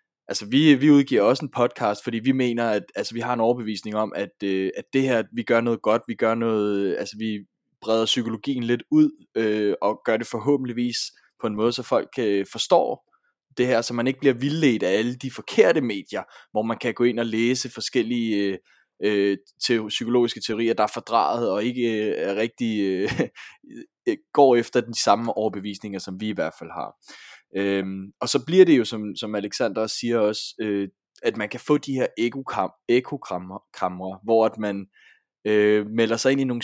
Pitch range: 105-120 Hz